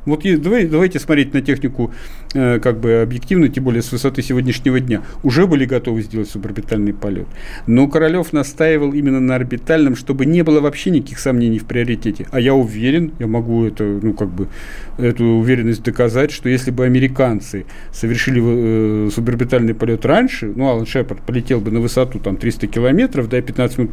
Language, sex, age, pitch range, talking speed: Russian, male, 40-59, 115-150 Hz, 180 wpm